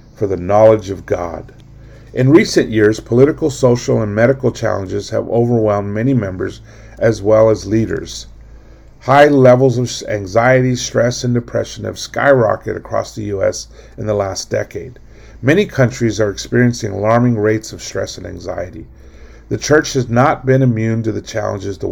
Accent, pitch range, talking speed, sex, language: American, 105-130 Hz, 155 wpm, male, English